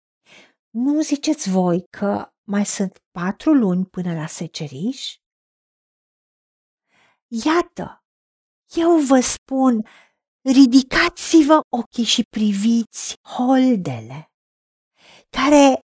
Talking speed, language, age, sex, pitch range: 80 wpm, Romanian, 40-59, female, 190-285 Hz